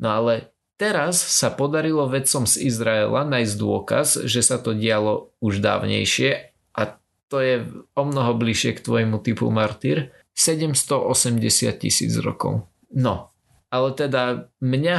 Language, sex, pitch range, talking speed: Slovak, male, 110-135 Hz, 130 wpm